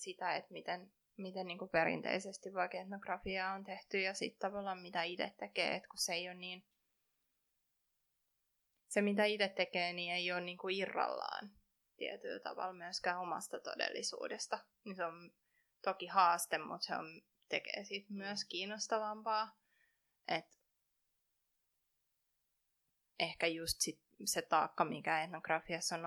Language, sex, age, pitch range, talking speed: Finnish, female, 20-39, 175-205 Hz, 130 wpm